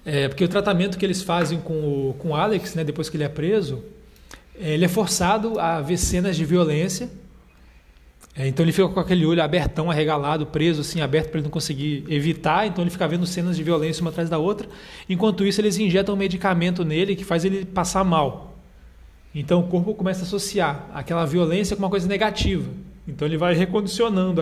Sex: male